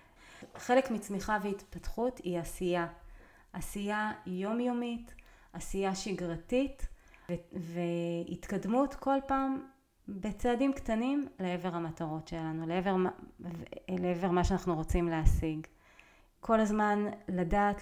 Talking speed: 90 wpm